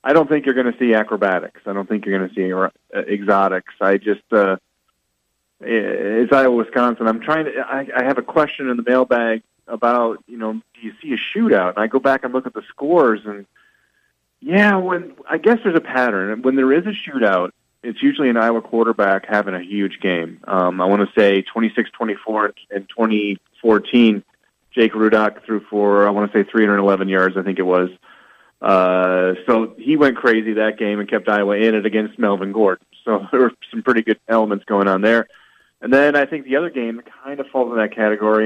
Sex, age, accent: male, 30-49, American